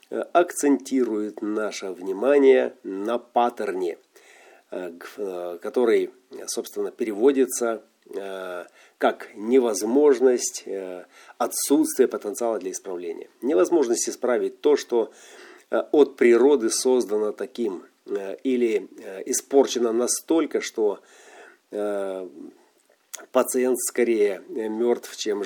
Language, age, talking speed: Russian, 40-59, 70 wpm